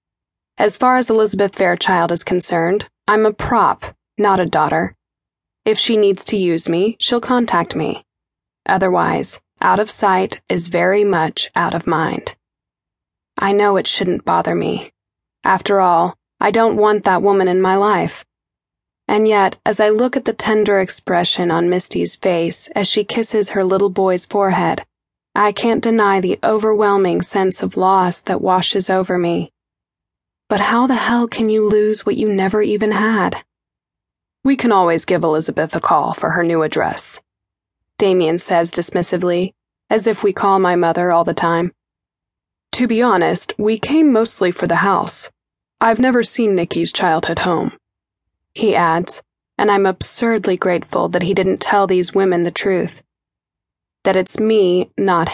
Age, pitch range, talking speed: 20-39, 175-215 Hz, 160 wpm